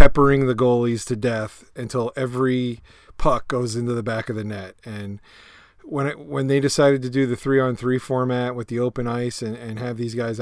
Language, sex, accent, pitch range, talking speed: English, male, American, 110-130 Hz, 215 wpm